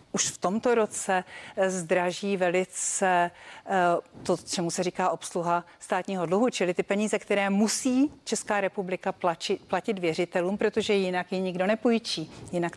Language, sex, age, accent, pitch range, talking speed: Czech, female, 40-59, native, 175-200 Hz, 130 wpm